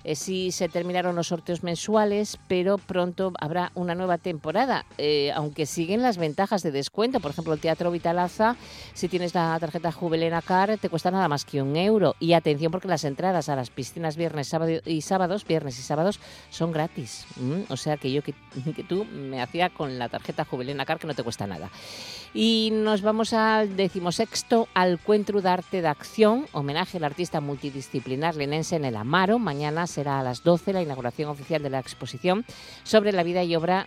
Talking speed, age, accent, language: 190 wpm, 50-69, Spanish, Spanish